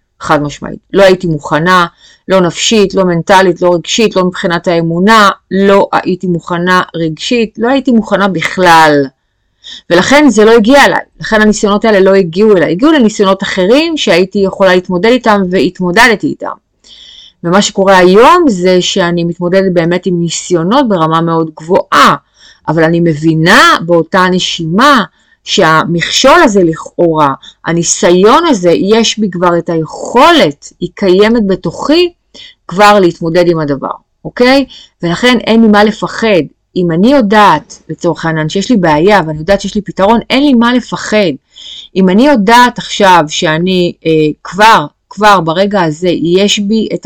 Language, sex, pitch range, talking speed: Hebrew, female, 170-215 Hz, 135 wpm